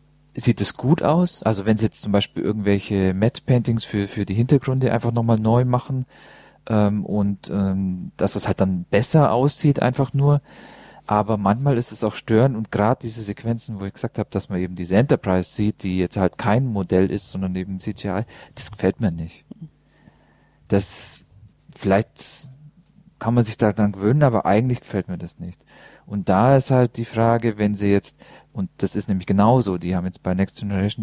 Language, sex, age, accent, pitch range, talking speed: English, male, 40-59, German, 95-120 Hz, 190 wpm